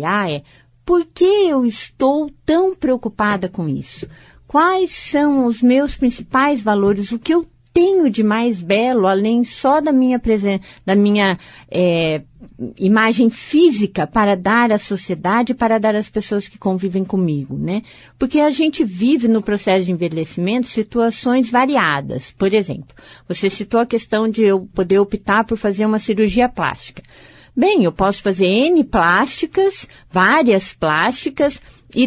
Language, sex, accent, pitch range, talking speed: Portuguese, female, Brazilian, 195-275 Hz, 145 wpm